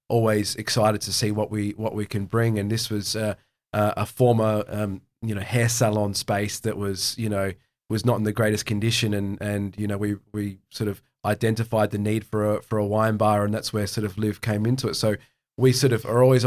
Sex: male